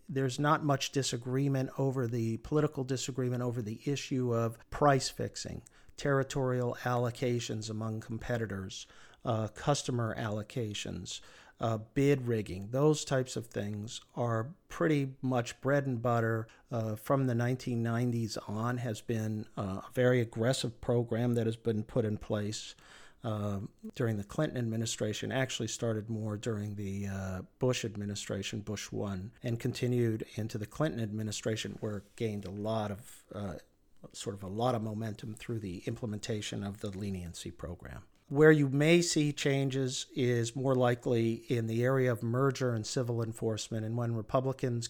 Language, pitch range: English, 110-125 Hz